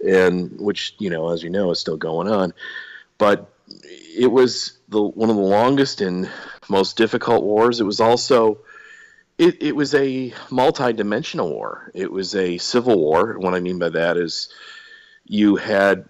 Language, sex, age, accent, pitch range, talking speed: English, male, 50-69, American, 95-130 Hz, 170 wpm